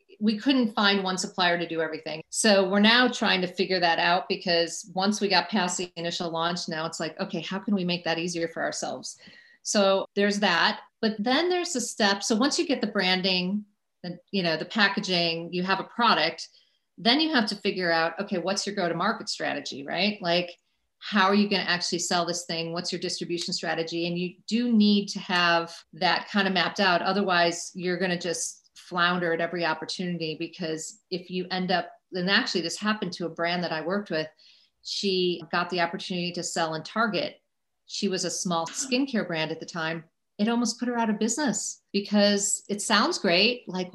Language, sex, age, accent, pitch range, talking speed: English, female, 40-59, American, 175-205 Hz, 205 wpm